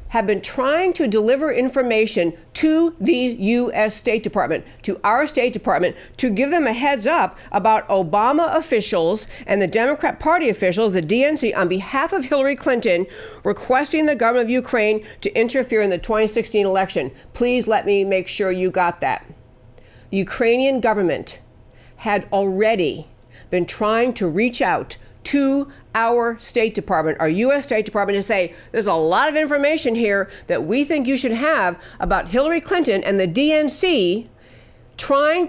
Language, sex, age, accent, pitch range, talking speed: English, female, 50-69, American, 210-285 Hz, 160 wpm